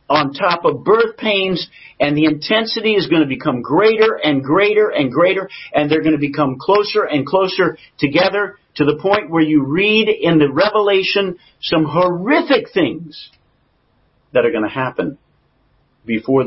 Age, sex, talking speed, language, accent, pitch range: 50-69, male, 160 wpm, English, American, 130-180 Hz